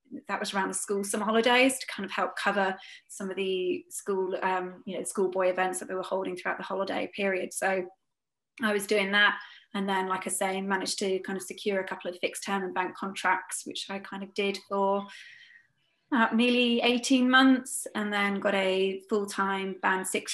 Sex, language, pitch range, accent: female, English, 190-215 Hz, British